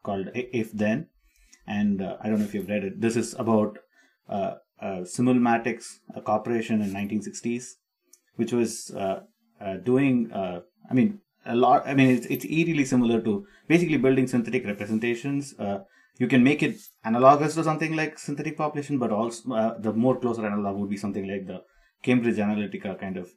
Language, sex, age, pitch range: English, male, 30-49, 105-130 Hz